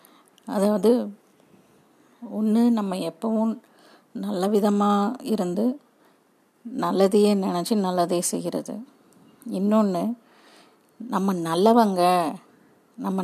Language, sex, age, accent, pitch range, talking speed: Tamil, female, 30-49, native, 185-225 Hz, 70 wpm